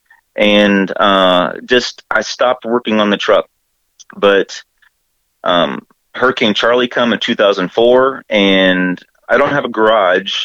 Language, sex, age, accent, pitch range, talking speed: English, male, 30-49, American, 95-110 Hz, 125 wpm